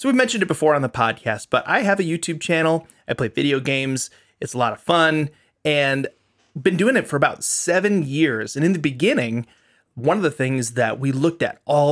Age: 30-49